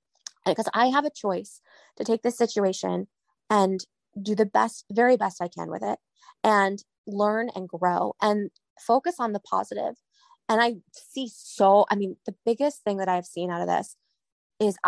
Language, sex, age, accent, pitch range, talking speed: English, female, 20-39, American, 195-235 Hz, 180 wpm